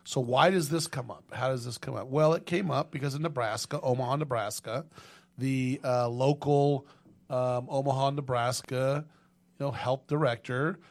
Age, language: 40-59, English